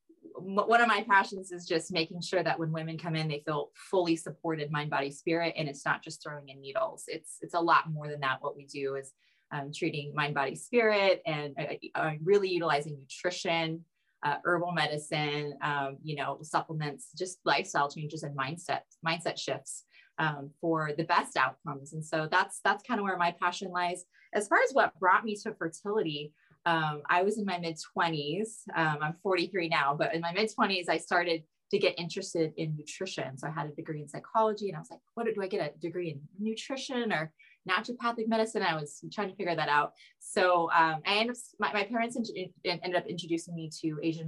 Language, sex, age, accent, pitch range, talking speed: English, female, 20-39, American, 150-195 Hz, 205 wpm